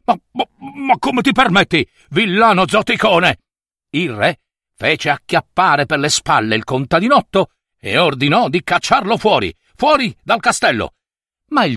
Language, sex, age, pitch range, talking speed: Italian, male, 60-79, 120-195 Hz, 140 wpm